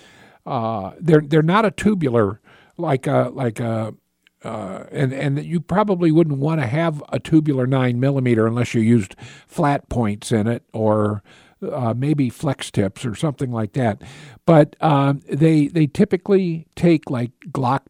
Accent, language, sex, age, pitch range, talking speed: American, English, male, 60-79, 130-175 Hz, 160 wpm